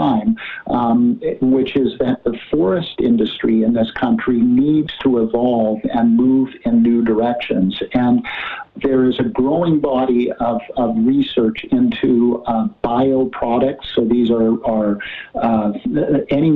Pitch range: 115-190 Hz